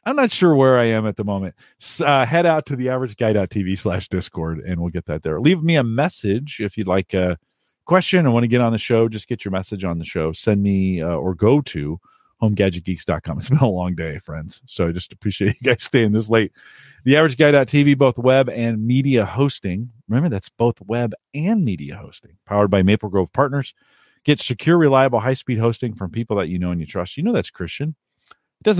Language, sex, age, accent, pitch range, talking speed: English, male, 40-59, American, 95-130 Hz, 215 wpm